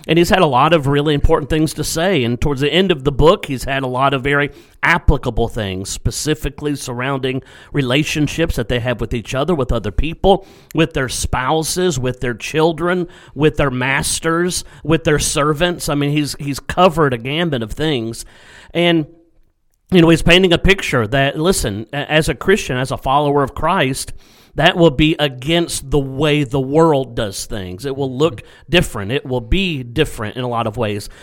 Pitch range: 125-160 Hz